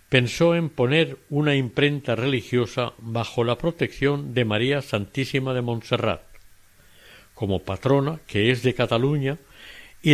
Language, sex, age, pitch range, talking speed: Spanish, male, 60-79, 110-145 Hz, 125 wpm